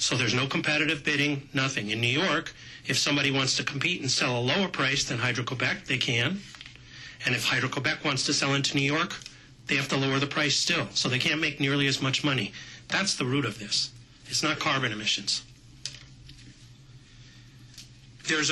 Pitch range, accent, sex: 130-150 Hz, American, male